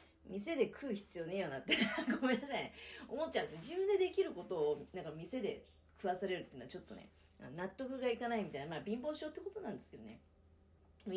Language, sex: Japanese, female